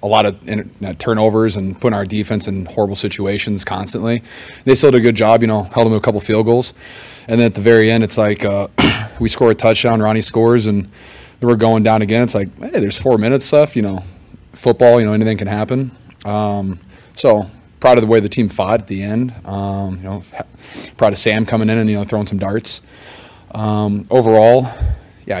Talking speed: 215 wpm